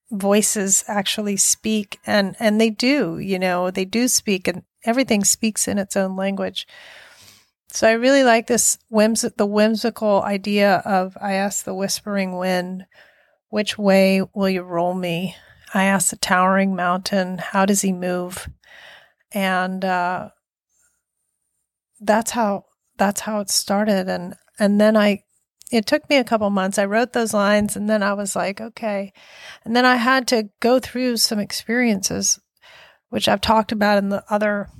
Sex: female